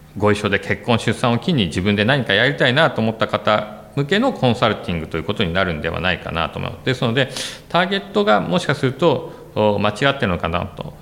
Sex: male